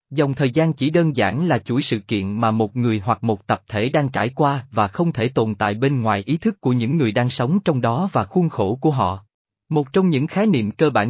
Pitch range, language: 110-155 Hz, Vietnamese